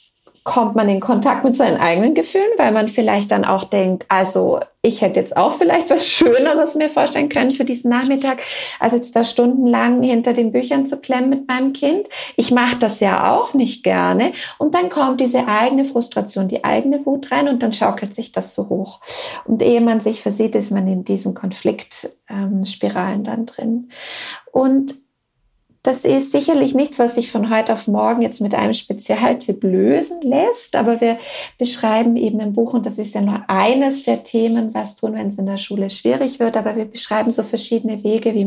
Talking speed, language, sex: 190 wpm, German, female